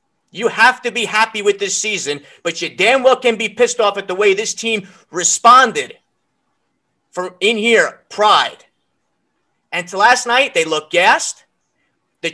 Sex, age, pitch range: male, 30-49, 195-265 Hz